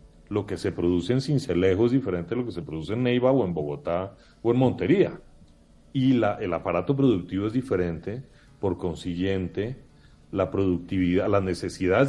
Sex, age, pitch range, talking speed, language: male, 30-49, 90-125 Hz, 170 wpm, Spanish